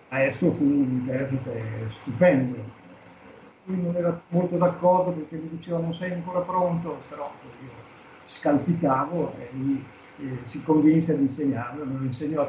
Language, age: Italian, 60-79